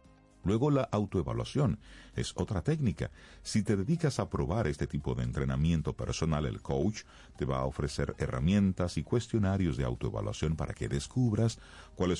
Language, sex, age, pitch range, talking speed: Spanish, male, 40-59, 75-100 Hz, 150 wpm